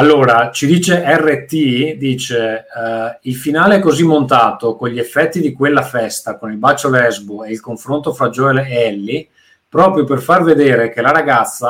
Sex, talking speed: male, 180 wpm